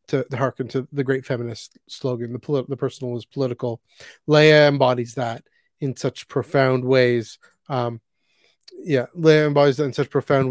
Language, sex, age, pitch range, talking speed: English, male, 30-49, 125-150 Hz, 165 wpm